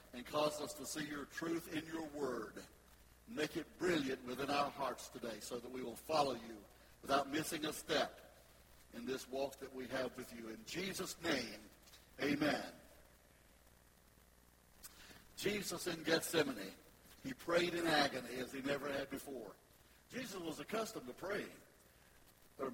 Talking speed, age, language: 150 wpm, 60-79, English